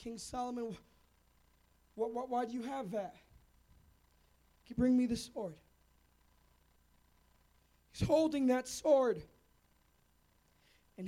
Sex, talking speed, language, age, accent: male, 85 wpm, English, 20-39, American